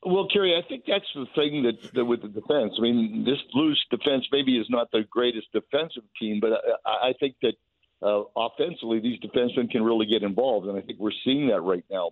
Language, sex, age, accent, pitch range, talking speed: English, male, 50-69, American, 110-120 Hz, 225 wpm